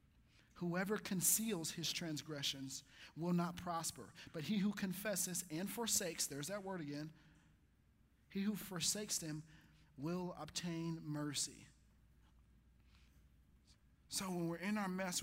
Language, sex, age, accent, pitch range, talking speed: English, male, 40-59, American, 125-180 Hz, 120 wpm